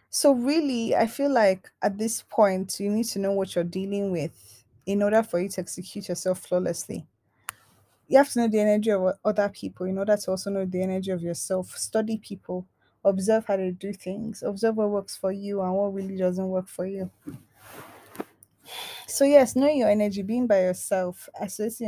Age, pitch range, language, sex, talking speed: 20-39, 185-210 Hz, English, female, 190 wpm